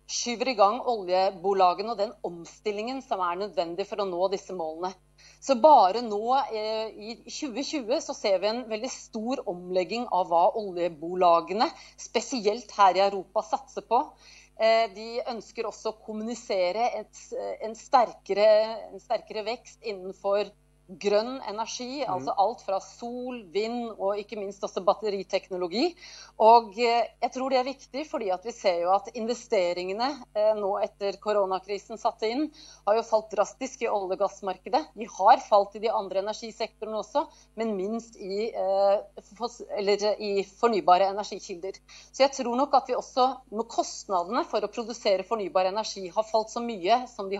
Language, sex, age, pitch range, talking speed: English, female, 30-49, 195-240 Hz, 150 wpm